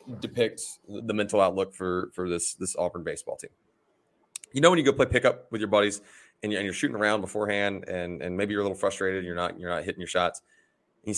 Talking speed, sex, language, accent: 225 wpm, male, English, American